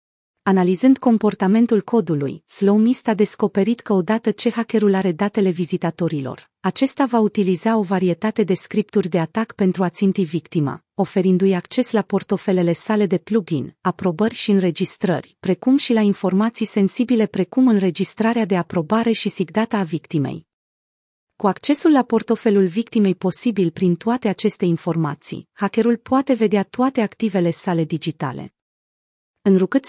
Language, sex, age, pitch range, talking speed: Romanian, female, 30-49, 180-225 Hz, 135 wpm